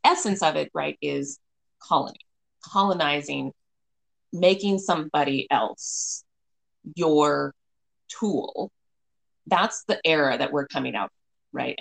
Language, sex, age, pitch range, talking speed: English, female, 30-49, 145-195 Hz, 100 wpm